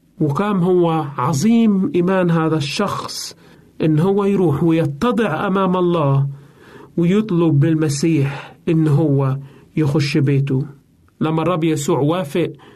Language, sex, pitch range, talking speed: Arabic, male, 145-200 Hz, 105 wpm